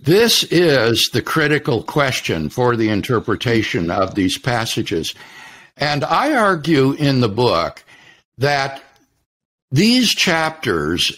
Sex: male